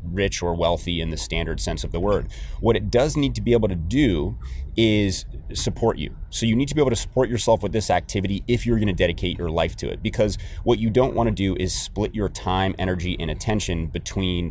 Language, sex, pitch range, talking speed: English, male, 90-105 Hz, 240 wpm